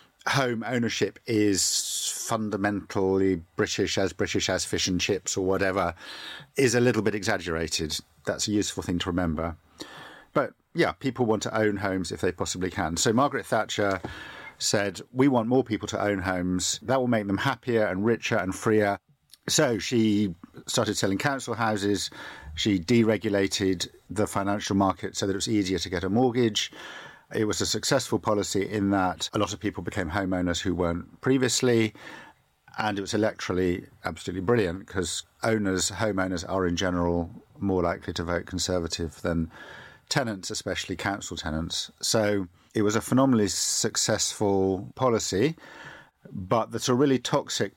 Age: 50-69